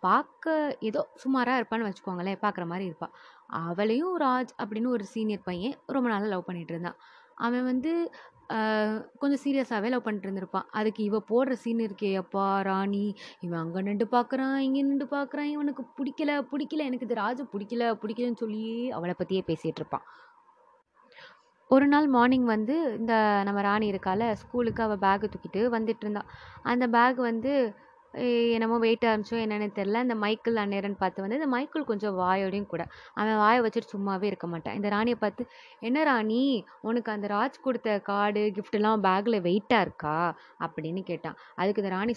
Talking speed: 155 wpm